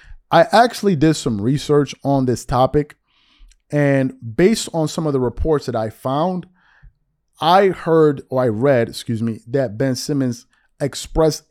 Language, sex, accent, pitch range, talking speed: English, male, American, 115-145 Hz, 150 wpm